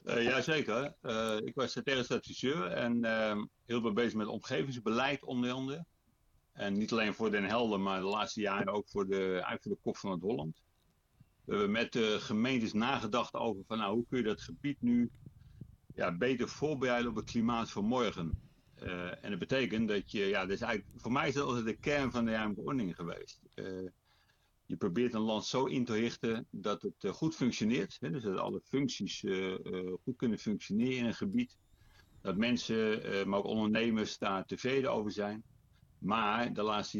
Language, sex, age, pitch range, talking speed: Dutch, male, 60-79, 105-125 Hz, 180 wpm